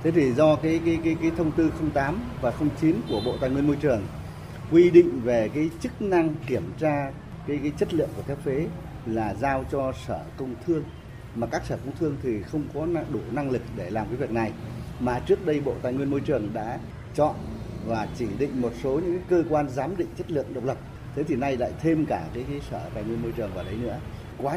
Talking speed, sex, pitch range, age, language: 235 wpm, male, 115-145 Hz, 30-49, Vietnamese